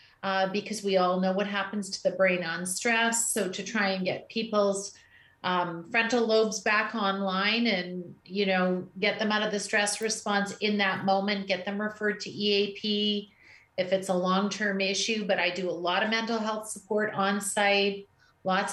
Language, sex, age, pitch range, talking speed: English, female, 40-59, 190-225 Hz, 185 wpm